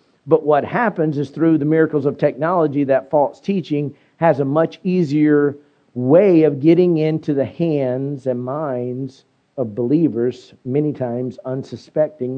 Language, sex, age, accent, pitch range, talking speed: English, male, 50-69, American, 130-155 Hz, 140 wpm